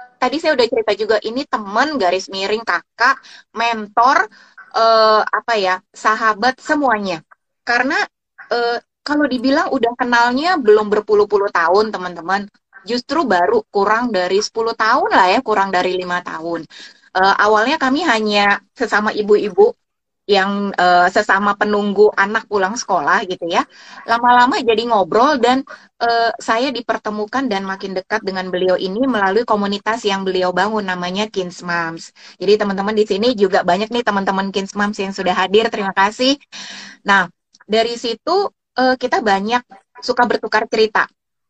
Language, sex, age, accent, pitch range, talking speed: Indonesian, female, 20-39, native, 195-240 Hz, 140 wpm